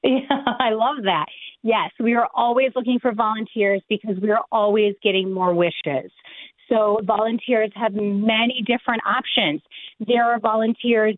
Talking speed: 145 wpm